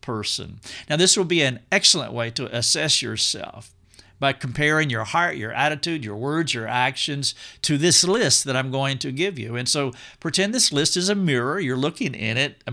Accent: American